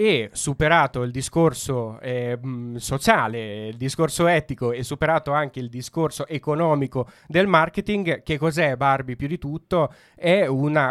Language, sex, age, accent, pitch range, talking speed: Italian, male, 20-39, native, 135-160 Hz, 140 wpm